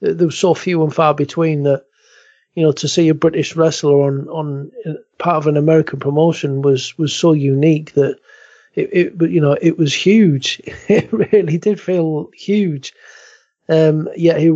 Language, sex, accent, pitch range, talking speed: English, male, British, 145-165 Hz, 180 wpm